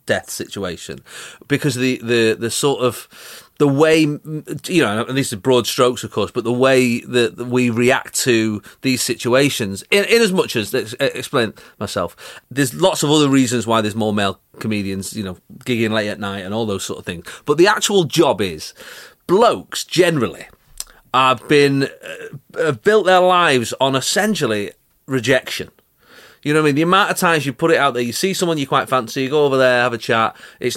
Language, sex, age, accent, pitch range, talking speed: English, male, 30-49, British, 115-155 Hz, 200 wpm